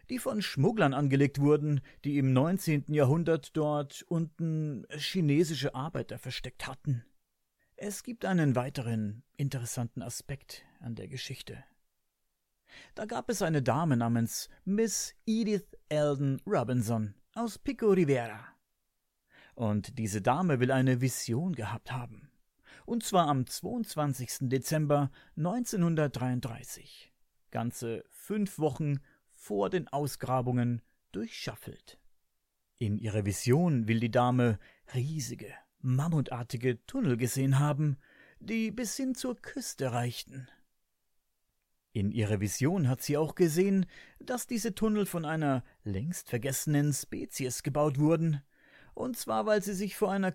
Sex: male